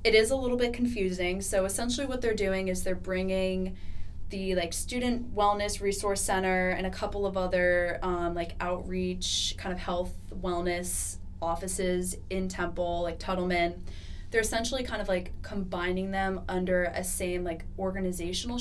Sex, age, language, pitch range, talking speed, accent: female, 20-39, English, 170-200 Hz, 160 wpm, American